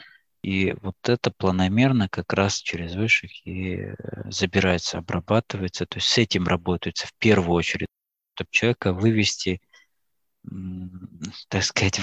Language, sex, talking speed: Russian, male, 120 wpm